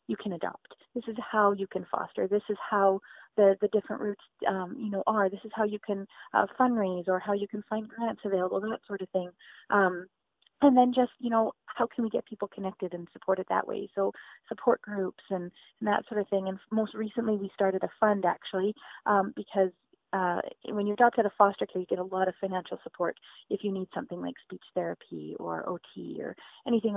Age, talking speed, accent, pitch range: 30-49, 220 wpm, American, 190-225 Hz